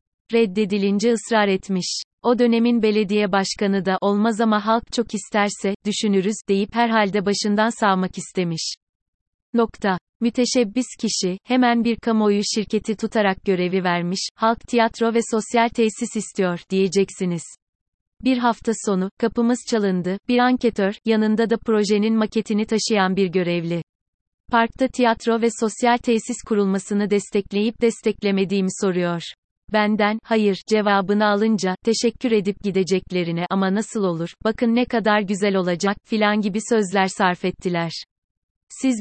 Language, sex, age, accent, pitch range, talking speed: Turkish, female, 30-49, native, 190-230 Hz, 125 wpm